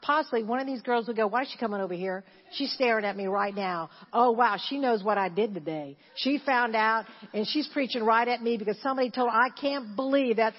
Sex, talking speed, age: female, 250 wpm, 50-69